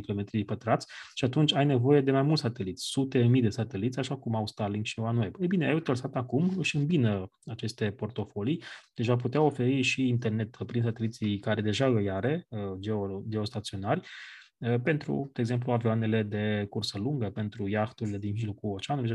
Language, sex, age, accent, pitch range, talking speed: Romanian, male, 20-39, native, 105-135 Hz, 180 wpm